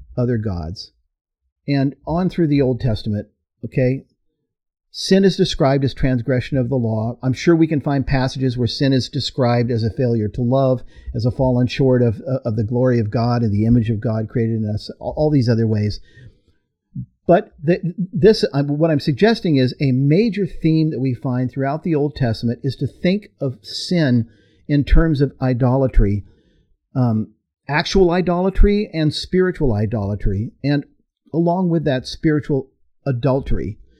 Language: English